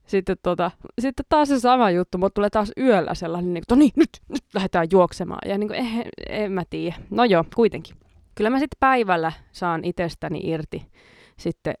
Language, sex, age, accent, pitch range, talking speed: Finnish, female, 20-39, native, 175-230 Hz, 195 wpm